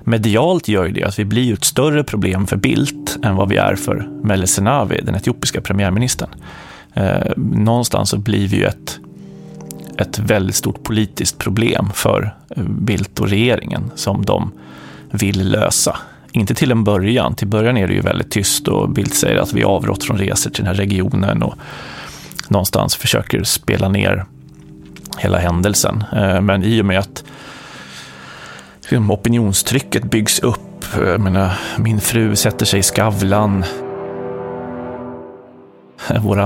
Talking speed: 140 wpm